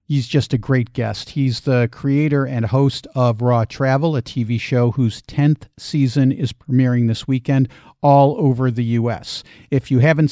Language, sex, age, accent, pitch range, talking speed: English, male, 50-69, American, 120-145 Hz, 175 wpm